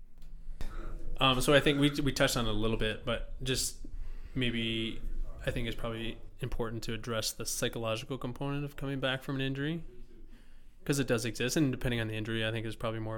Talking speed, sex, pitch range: 205 wpm, male, 110-130 Hz